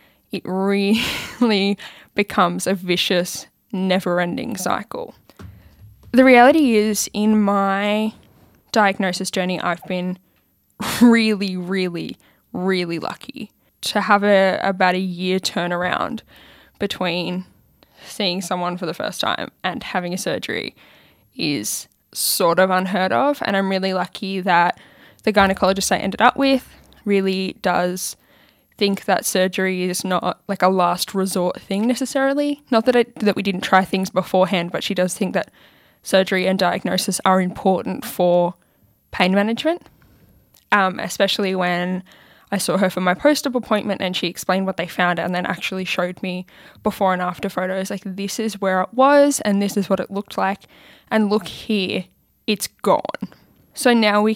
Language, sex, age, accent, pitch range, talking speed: English, female, 10-29, Australian, 180-210 Hz, 150 wpm